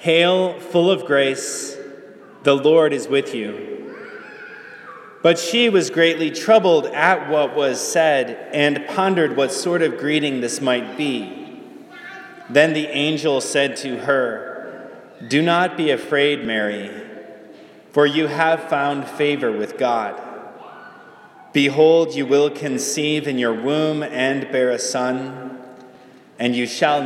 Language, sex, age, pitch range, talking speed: English, male, 30-49, 130-160 Hz, 130 wpm